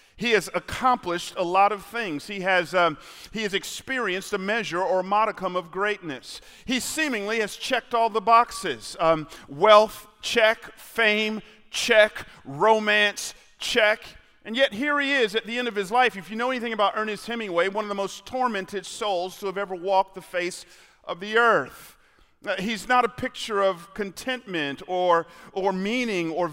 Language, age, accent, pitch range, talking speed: English, 40-59, American, 180-225 Hz, 170 wpm